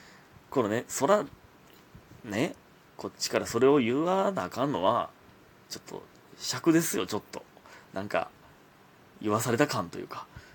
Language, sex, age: Japanese, male, 30-49